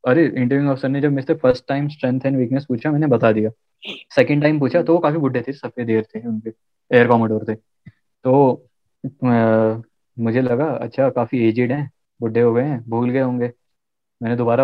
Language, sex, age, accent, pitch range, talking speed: Hindi, male, 20-39, native, 120-145 Hz, 45 wpm